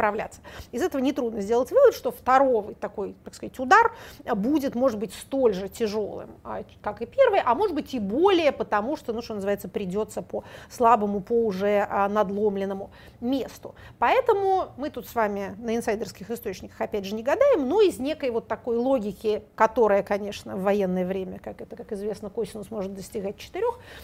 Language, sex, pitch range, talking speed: Russian, female, 210-270 Hz, 170 wpm